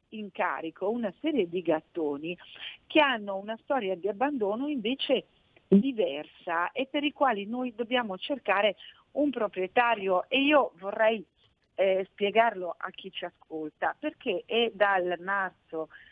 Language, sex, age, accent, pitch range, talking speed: Italian, female, 40-59, native, 160-220 Hz, 135 wpm